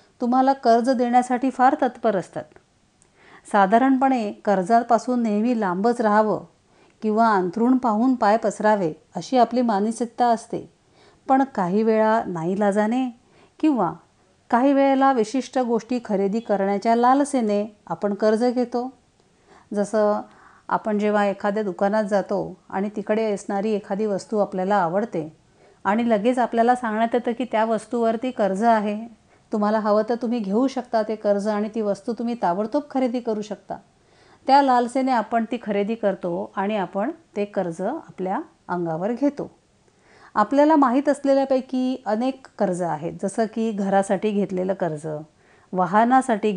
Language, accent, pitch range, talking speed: Marathi, native, 200-245 Hz, 130 wpm